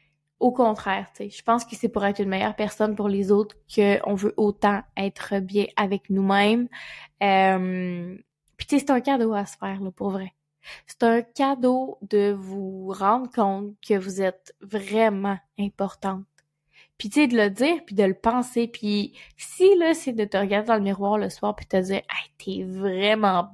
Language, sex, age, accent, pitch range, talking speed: French, female, 20-39, Canadian, 195-230 Hz, 200 wpm